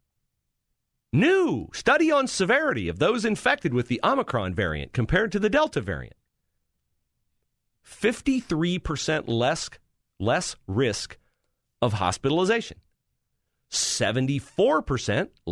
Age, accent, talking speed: 40-59, American, 90 wpm